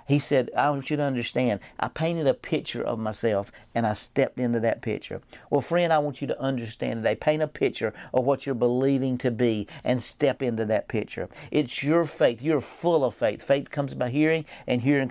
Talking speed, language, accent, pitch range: 215 wpm, English, American, 115-140 Hz